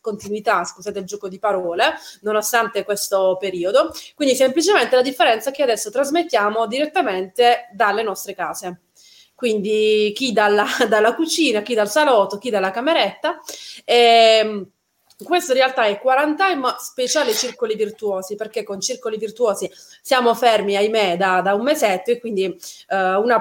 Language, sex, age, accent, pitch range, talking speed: Italian, female, 30-49, native, 195-250 Hz, 145 wpm